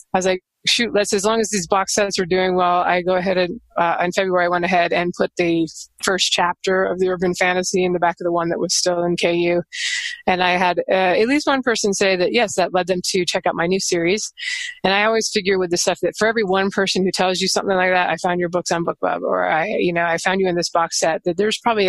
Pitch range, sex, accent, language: 175-210 Hz, female, American, English